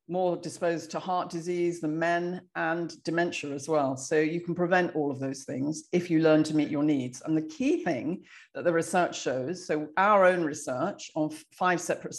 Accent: British